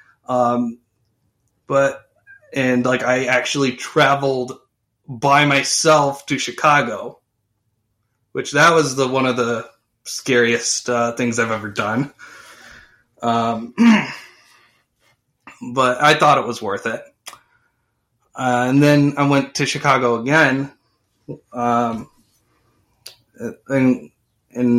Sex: male